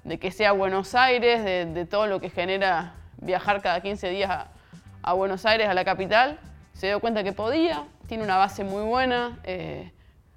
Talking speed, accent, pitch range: 190 wpm, Argentinian, 180-220 Hz